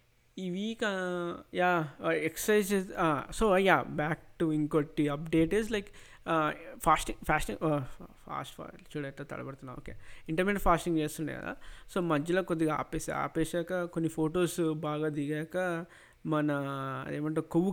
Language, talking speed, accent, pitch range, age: Telugu, 110 wpm, native, 150-170 Hz, 20-39